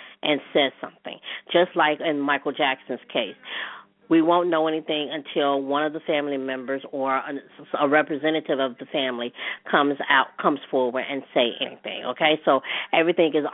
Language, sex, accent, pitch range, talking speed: English, female, American, 140-195 Hz, 160 wpm